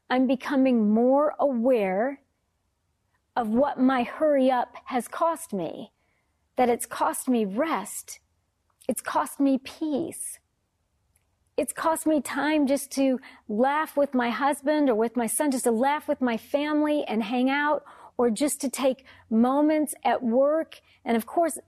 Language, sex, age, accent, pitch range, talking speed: English, female, 40-59, American, 225-290 Hz, 150 wpm